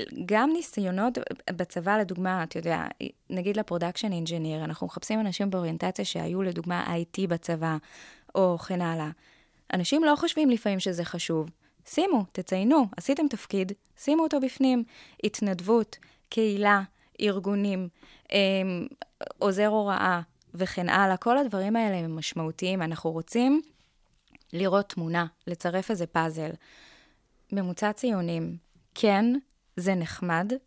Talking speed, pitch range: 110 wpm, 170-220 Hz